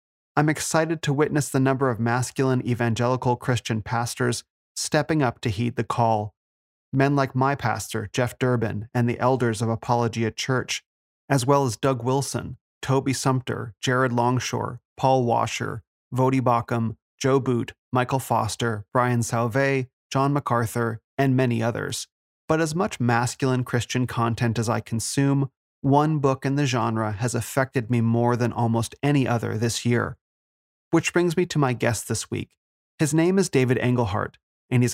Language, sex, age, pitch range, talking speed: English, male, 30-49, 115-135 Hz, 160 wpm